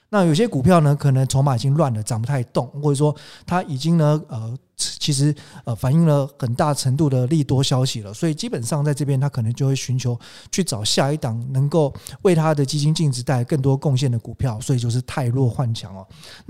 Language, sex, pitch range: Chinese, male, 125-160 Hz